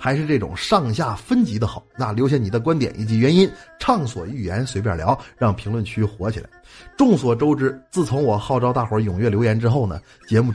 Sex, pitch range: male, 105-145 Hz